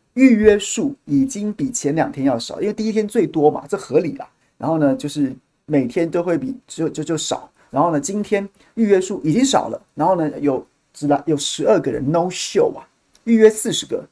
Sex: male